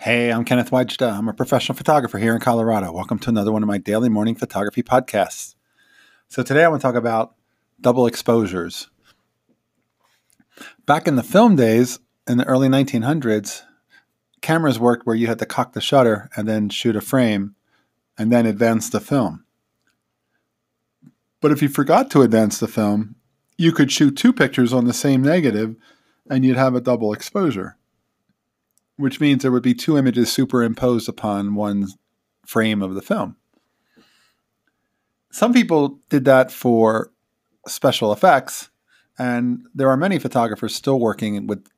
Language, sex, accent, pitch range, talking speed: English, male, American, 110-130 Hz, 160 wpm